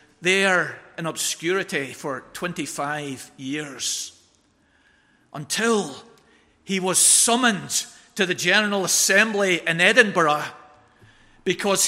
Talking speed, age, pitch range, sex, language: 85 wpm, 40-59, 155-200 Hz, male, English